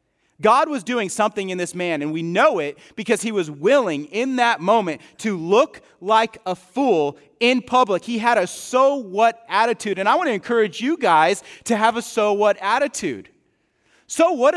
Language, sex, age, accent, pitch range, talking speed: English, male, 30-49, American, 175-240 Hz, 190 wpm